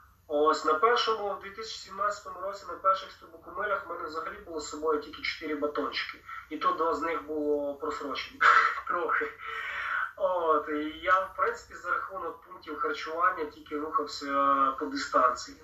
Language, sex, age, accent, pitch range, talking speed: Ukrainian, male, 30-49, native, 145-220 Hz, 150 wpm